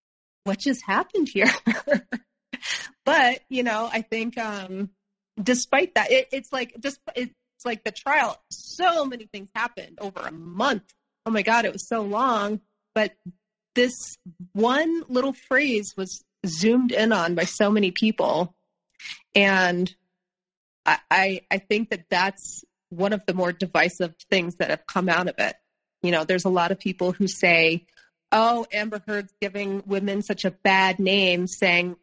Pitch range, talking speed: 185-230 Hz, 160 wpm